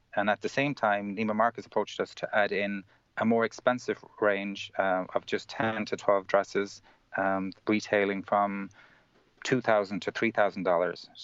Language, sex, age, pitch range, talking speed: English, male, 30-49, 95-110 Hz, 155 wpm